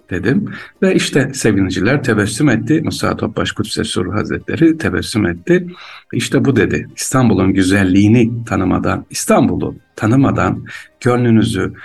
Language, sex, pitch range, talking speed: Turkish, male, 100-125 Hz, 105 wpm